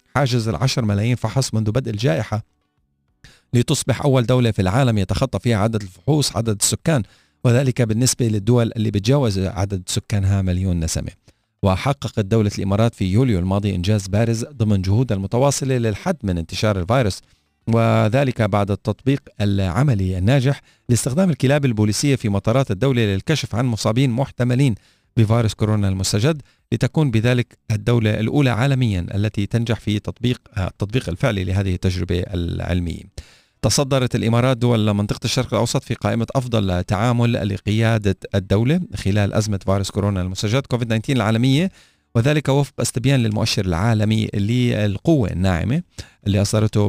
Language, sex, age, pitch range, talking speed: Arabic, male, 40-59, 100-125 Hz, 130 wpm